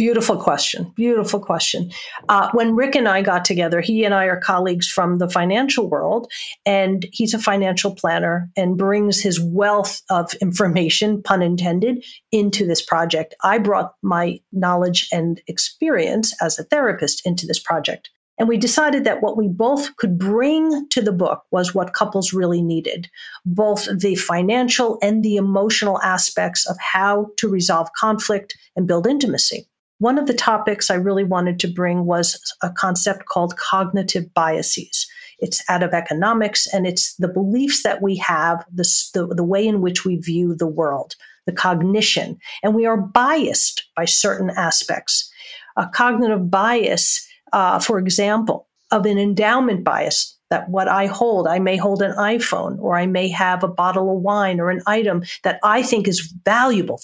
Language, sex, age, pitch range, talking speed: English, female, 50-69, 180-220 Hz, 165 wpm